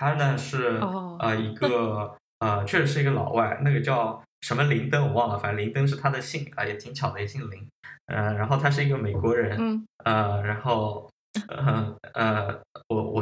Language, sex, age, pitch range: Chinese, male, 10-29, 110-140 Hz